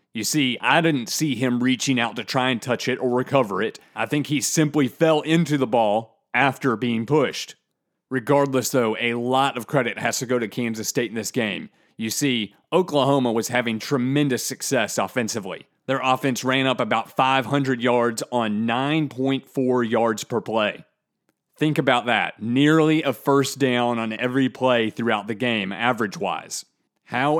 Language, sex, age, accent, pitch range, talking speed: English, male, 30-49, American, 115-135 Hz, 170 wpm